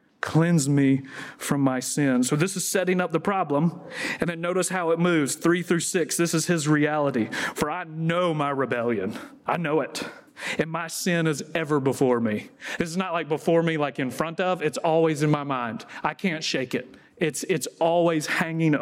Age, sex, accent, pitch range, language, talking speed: 40-59, male, American, 150-195 Hz, English, 200 wpm